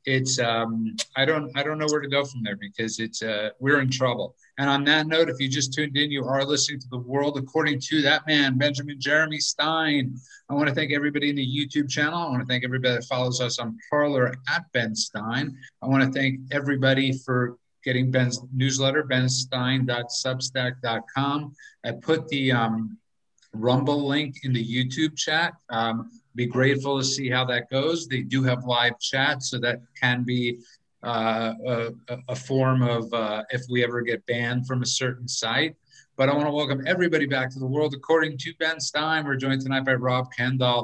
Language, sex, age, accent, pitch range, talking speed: English, male, 50-69, American, 120-145 Hz, 200 wpm